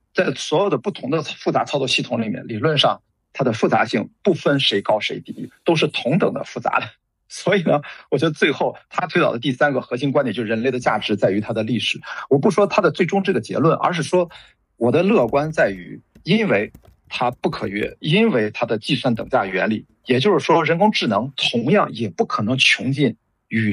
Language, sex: Chinese, male